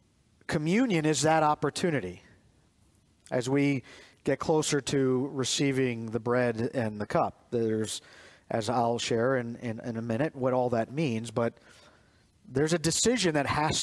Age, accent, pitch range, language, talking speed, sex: 40-59, American, 115-165 Hz, English, 150 wpm, male